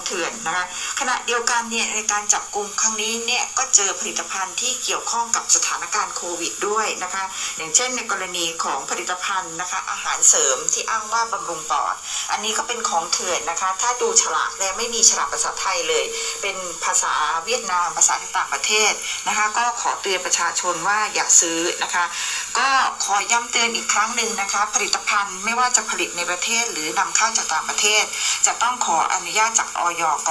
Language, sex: Thai, female